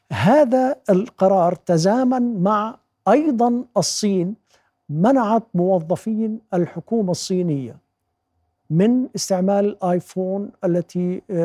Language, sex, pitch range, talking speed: Arabic, male, 165-205 Hz, 75 wpm